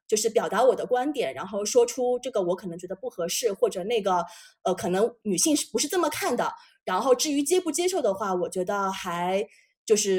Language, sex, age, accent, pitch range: Chinese, female, 20-39, native, 190-285 Hz